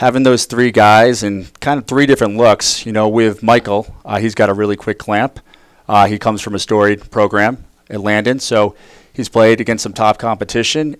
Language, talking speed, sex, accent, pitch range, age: English, 200 wpm, male, American, 100-115 Hz, 30-49